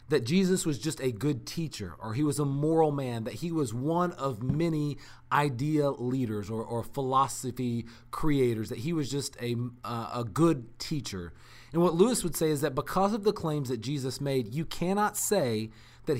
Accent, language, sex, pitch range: American, English, male, 120-160 Hz